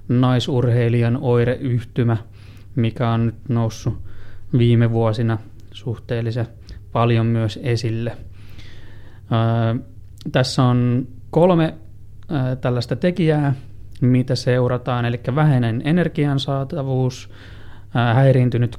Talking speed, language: 80 wpm, Finnish